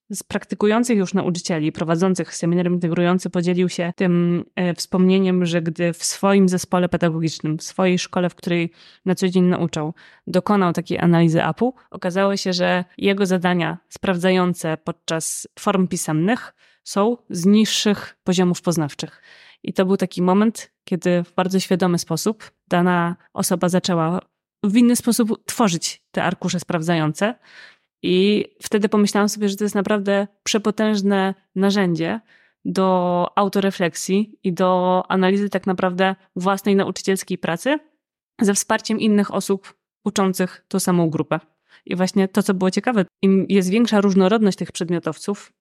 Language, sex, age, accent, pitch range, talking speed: Polish, female, 20-39, native, 180-205 Hz, 135 wpm